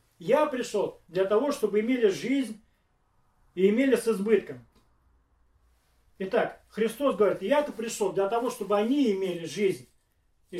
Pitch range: 175-225 Hz